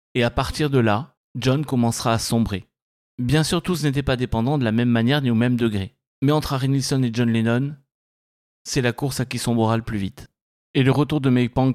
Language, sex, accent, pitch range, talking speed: French, male, French, 110-140 Hz, 230 wpm